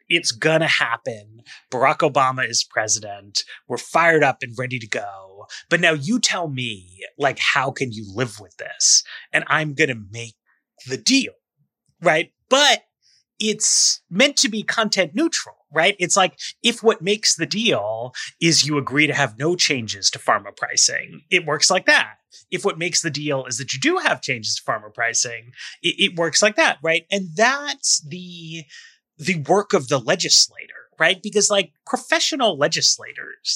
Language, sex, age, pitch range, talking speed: English, male, 30-49, 135-215 Hz, 175 wpm